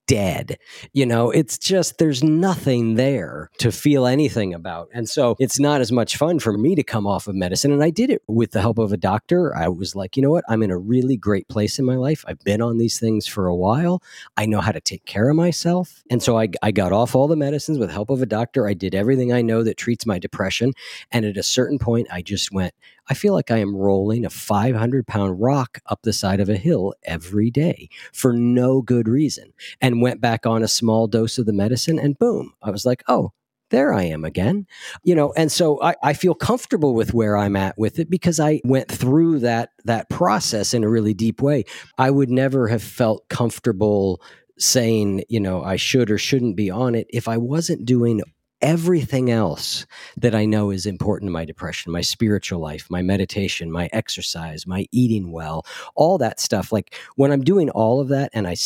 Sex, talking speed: male, 225 wpm